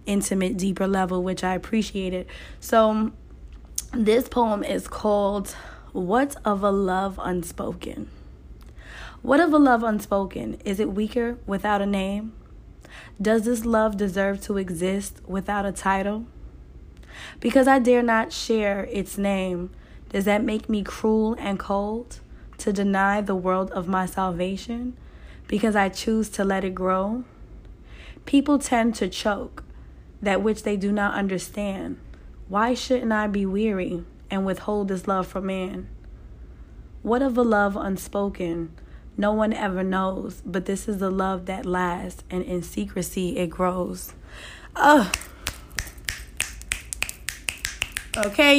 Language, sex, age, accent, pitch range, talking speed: English, female, 20-39, American, 190-235 Hz, 135 wpm